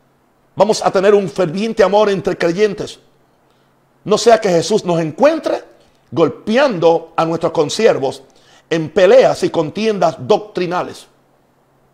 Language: Spanish